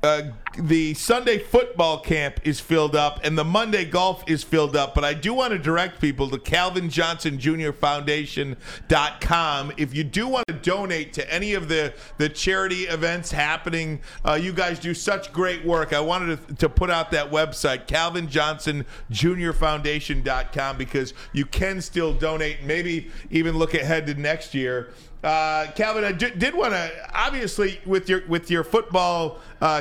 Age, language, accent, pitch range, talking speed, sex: 50-69, English, American, 150-185 Hz, 160 wpm, male